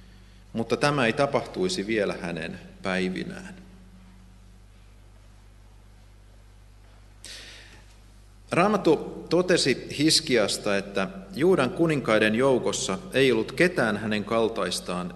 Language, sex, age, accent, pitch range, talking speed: Finnish, male, 40-59, native, 95-115 Hz, 75 wpm